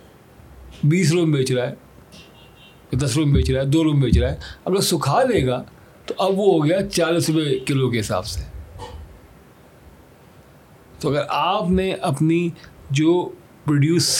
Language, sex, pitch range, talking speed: Urdu, male, 130-190 Hz, 160 wpm